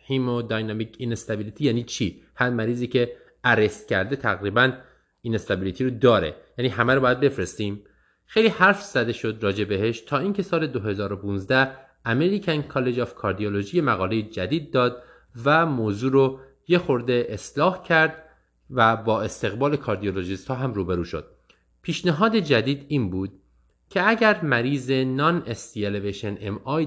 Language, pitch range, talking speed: Persian, 95-140 Hz, 135 wpm